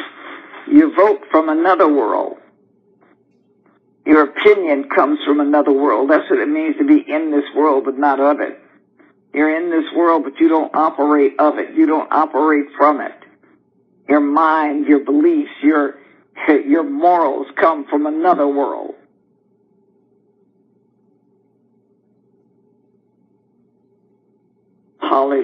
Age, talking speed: 60-79, 120 wpm